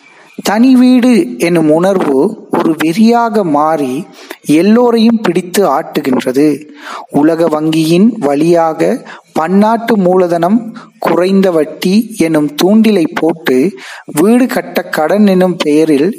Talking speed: 95 wpm